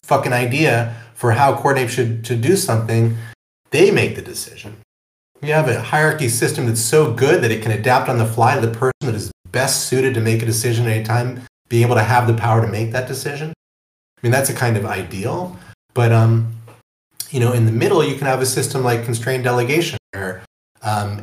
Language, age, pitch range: English, 30-49, 105-125 Hz